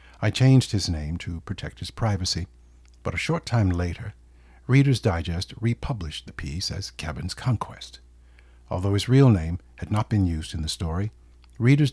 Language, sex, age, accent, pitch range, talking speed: English, male, 60-79, American, 75-115 Hz, 165 wpm